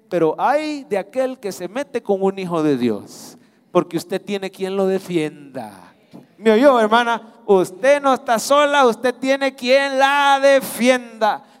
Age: 40-59